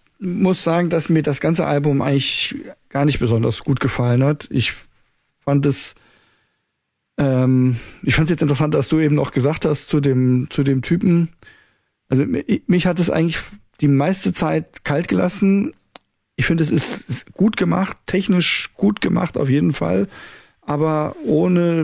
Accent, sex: German, male